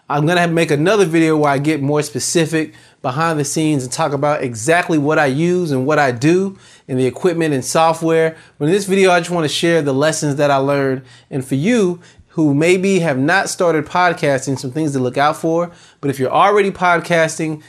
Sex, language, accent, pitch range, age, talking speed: male, English, American, 140-170 Hz, 30-49, 220 wpm